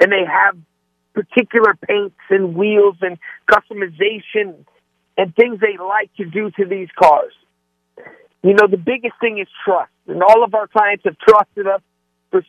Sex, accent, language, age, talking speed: male, American, English, 50-69, 165 wpm